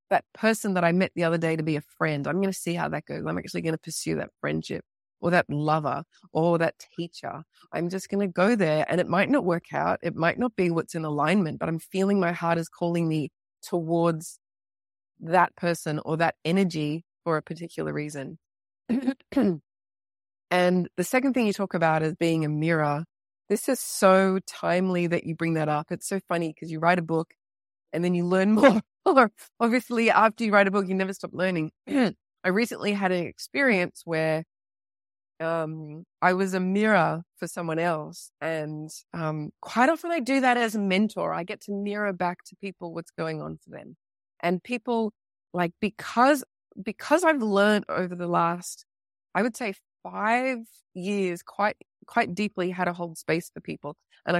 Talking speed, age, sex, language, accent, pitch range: 190 wpm, 20-39, female, English, Australian, 160-200 Hz